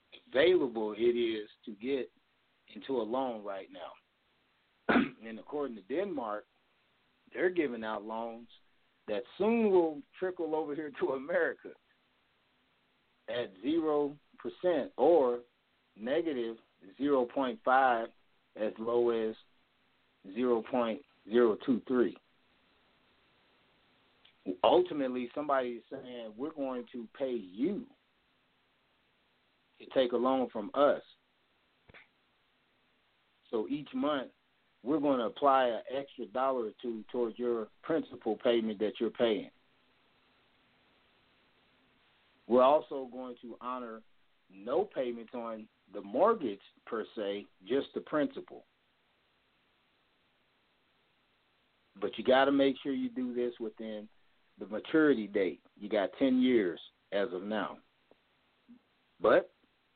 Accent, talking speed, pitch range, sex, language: American, 105 wpm, 115-140 Hz, male, English